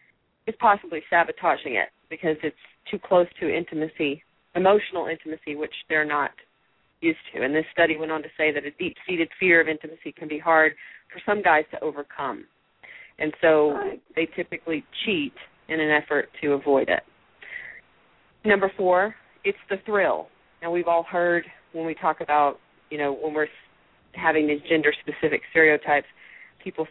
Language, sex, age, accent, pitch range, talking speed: English, female, 30-49, American, 155-190 Hz, 160 wpm